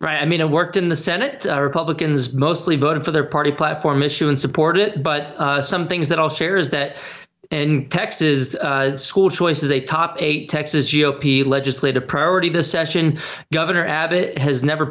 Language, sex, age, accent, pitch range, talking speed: English, male, 20-39, American, 140-165 Hz, 195 wpm